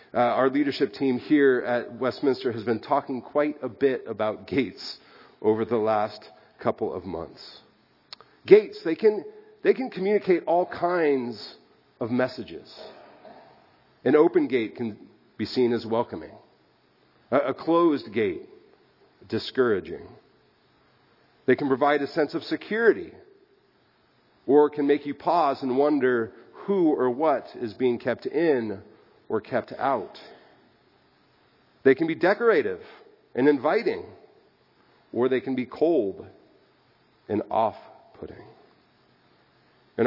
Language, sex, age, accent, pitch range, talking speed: English, male, 40-59, American, 120-155 Hz, 125 wpm